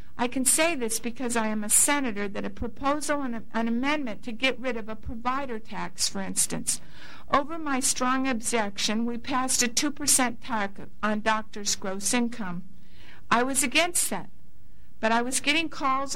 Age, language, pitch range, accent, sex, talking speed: 60-79, English, 220-280 Hz, American, female, 170 wpm